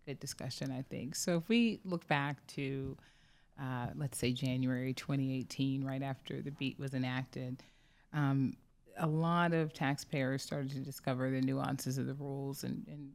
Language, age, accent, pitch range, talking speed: English, 30-49, American, 130-145 Hz, 165 wpm